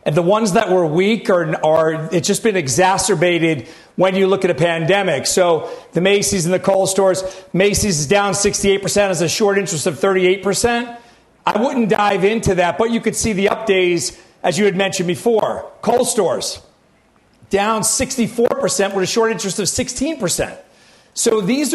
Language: English